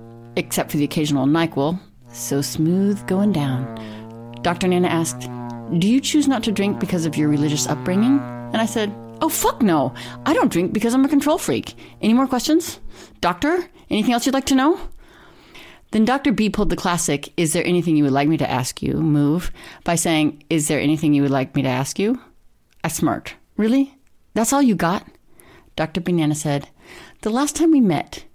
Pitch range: 150-215 Hz